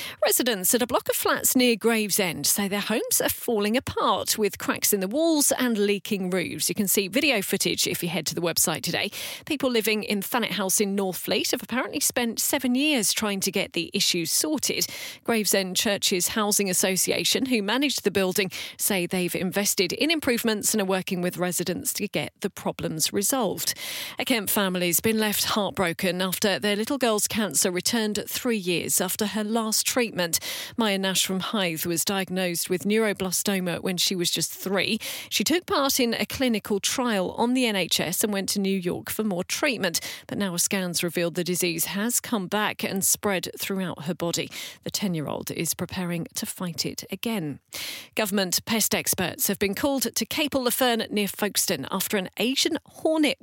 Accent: British